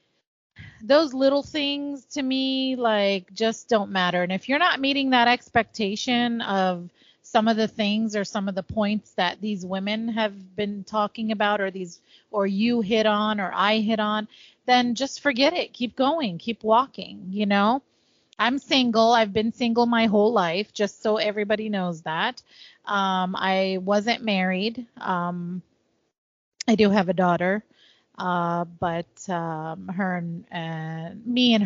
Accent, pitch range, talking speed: American, 180-230 Hz, 160 wpm